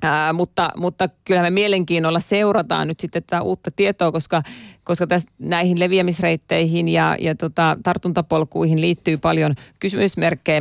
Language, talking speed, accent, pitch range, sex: Finnish, 135 wpm, native, 150-170 Hz, female